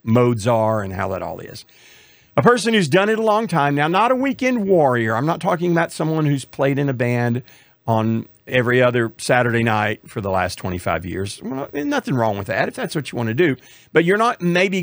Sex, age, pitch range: male, 50-69, 120-170 Hz